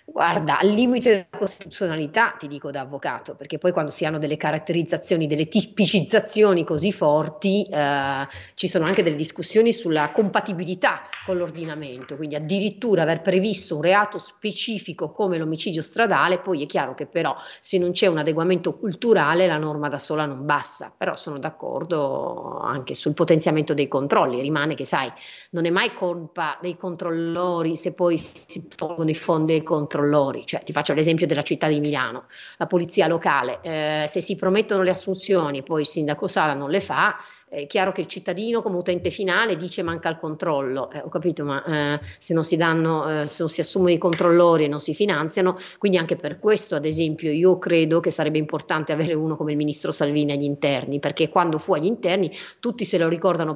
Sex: female